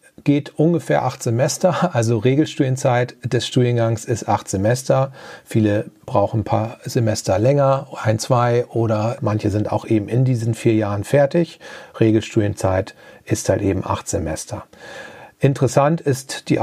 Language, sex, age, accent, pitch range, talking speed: German, male, 40-59, German, 115-140 Hz, 135 wpm